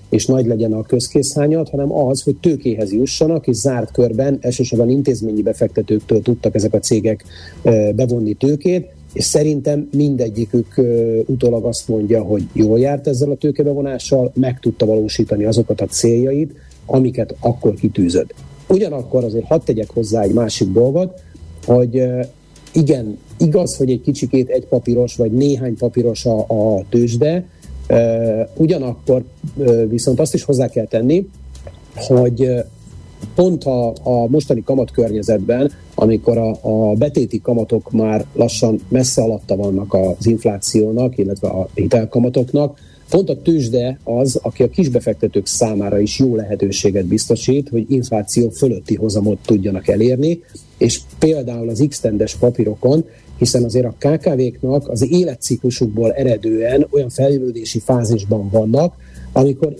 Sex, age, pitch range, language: male, 50-69, 110-135 Hz, Hungarian